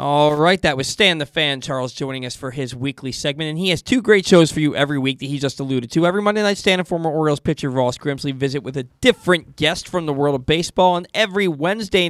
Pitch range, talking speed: 140-175 Hz, 260 wpm